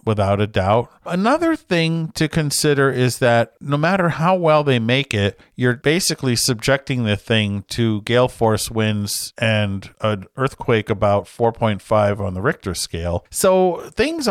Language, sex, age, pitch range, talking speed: English, male, 50-69, 110-145 Hz, 150 wpm